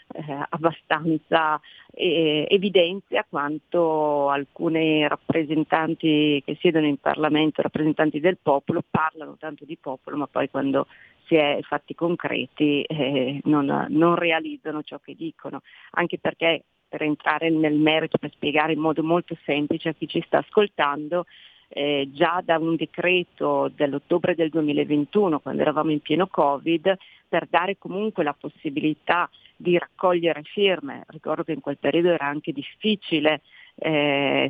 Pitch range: 150-175 Hz